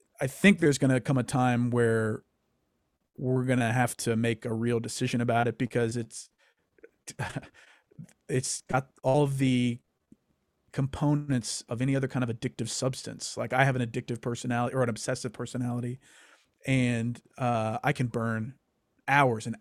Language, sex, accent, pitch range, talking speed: English, male, American, 120-140 Hz, 160 wpm